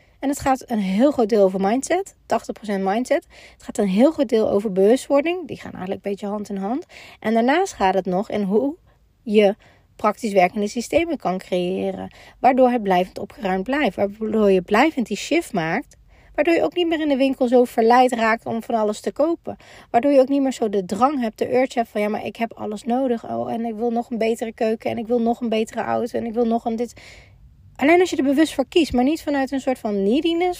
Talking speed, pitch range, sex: 235 wpm, 210-275 Hz, female